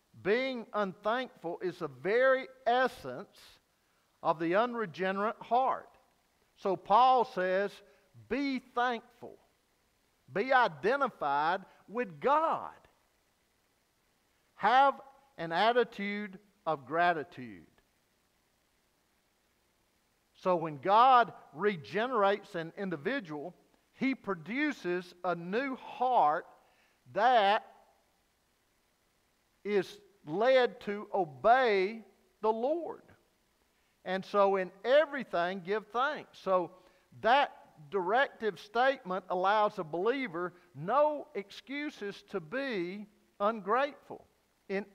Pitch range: 185-245 Hz